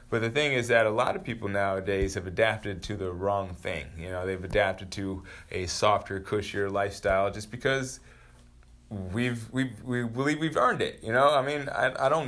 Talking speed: 200 wpm